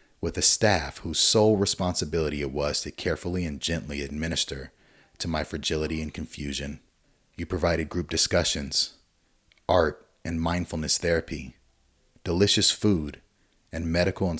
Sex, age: male, 30-49